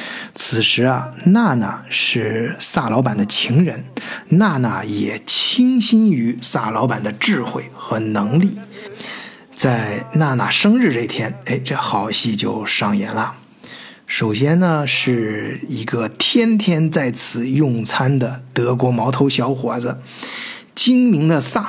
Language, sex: Chinese, male